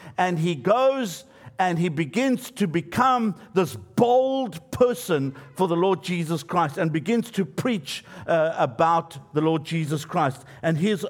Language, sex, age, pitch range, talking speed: English, male, 60-79, 160-220 Hz, 150 wpm